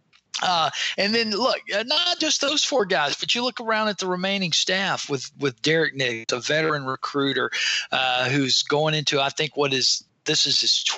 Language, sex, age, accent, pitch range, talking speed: English, male, 40-59, American, 145-185 Hz, 200 wpm